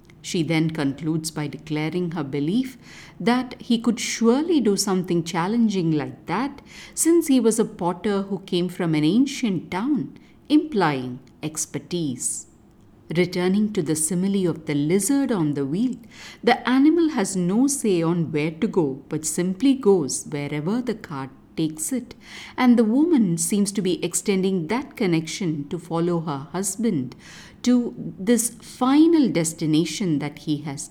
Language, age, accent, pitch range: English, 50-69, Indian, 155-235 Hz